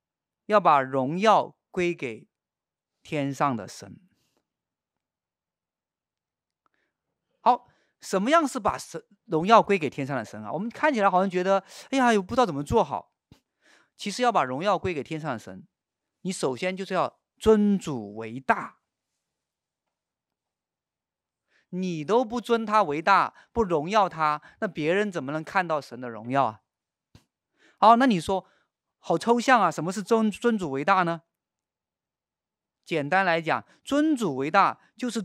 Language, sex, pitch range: Chinese, male, 150-220 Hz